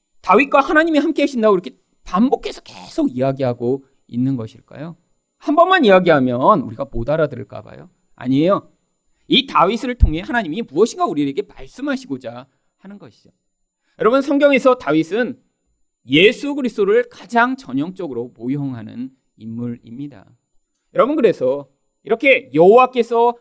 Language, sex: Korean, male